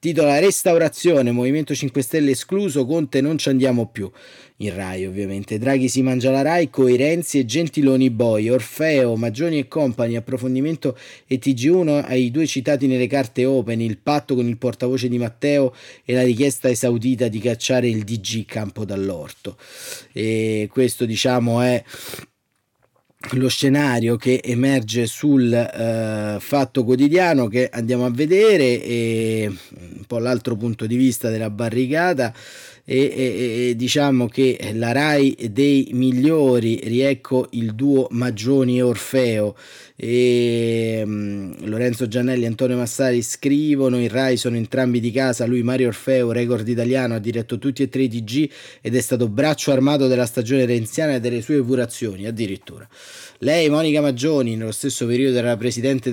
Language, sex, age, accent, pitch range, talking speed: Italian, male, 30-49, native, 115-135 Hz, 150 wpm